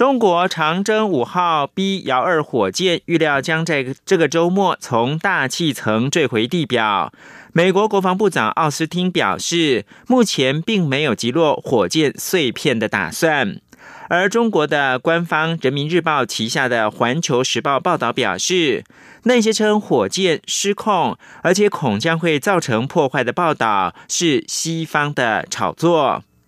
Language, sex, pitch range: English, male, 145-190 Hz